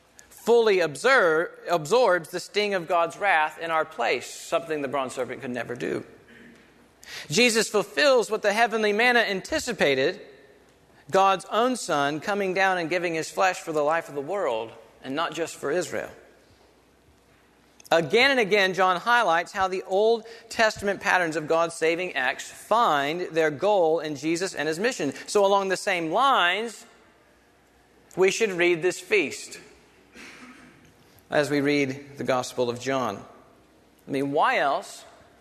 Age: 40-59